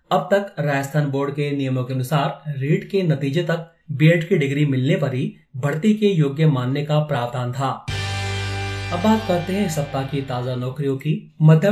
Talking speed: 180 wpm